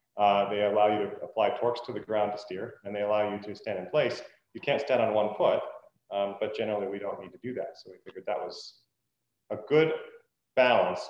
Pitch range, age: 105-145 Hz, 30-49